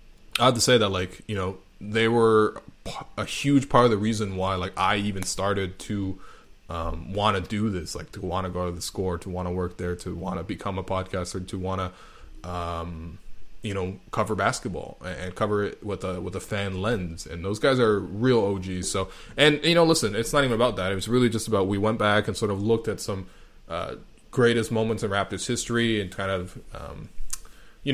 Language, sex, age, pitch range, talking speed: English, male, 20-39, 95-125 Hz, 225 wpm